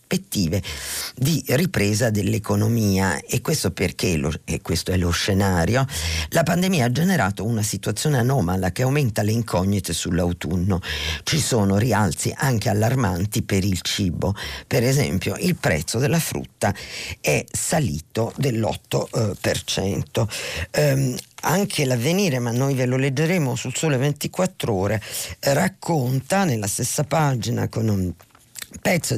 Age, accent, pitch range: 50-69, native, 100-135 Hz